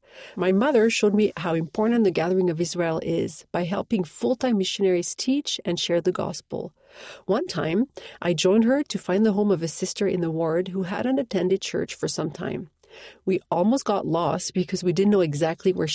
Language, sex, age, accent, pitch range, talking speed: English, female, 40-59, Canadian, 180-230 Hz, 195 wpm